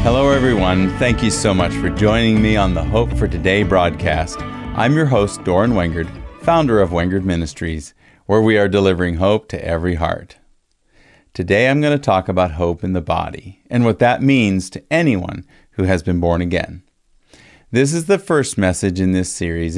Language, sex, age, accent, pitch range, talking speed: English, male, 40-59, American, 90-125 Hz, 185 wpm